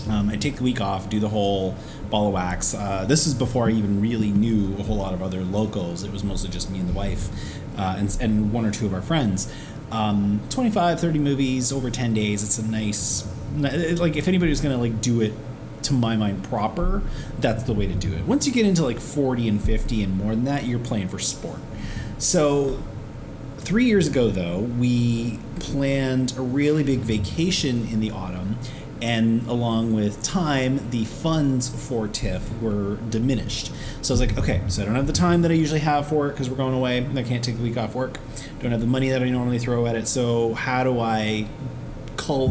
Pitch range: 105-135 Hz